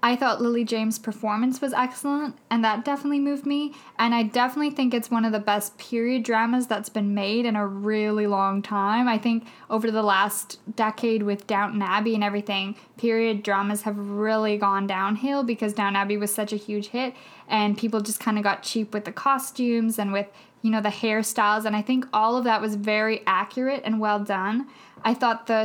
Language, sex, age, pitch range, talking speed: English, female, 10-29, 210-235 Hz, 205 wpm